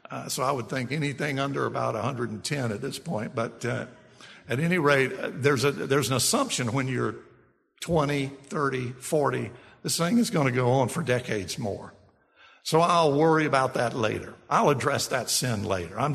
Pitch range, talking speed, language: 115-150 Hz, 180 wpm, English